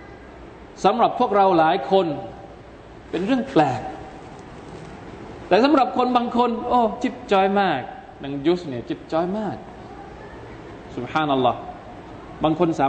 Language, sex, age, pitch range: Thai, male, 20-39, 135-165 Hz